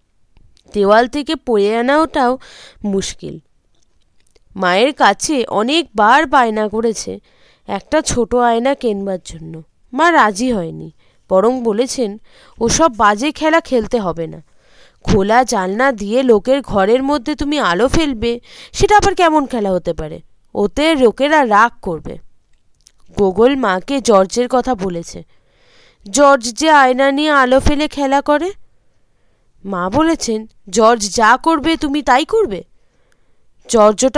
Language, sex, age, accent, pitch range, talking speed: Bengali, female, 20-39, native, 205-280 Hz, 105 wpm